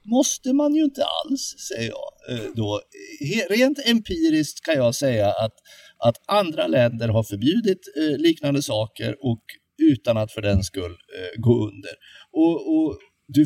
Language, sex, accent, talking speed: Swedish, male, native, 145 wpm